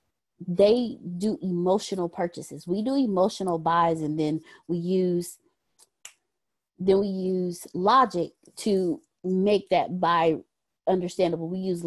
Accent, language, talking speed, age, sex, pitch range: American, English, 115 wpm, 20-39, female, 180-240 Hz